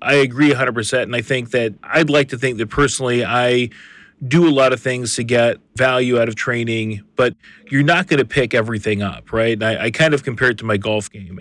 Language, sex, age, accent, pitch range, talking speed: English, male, 40-59, American, 120-145 Hz, 235 wpm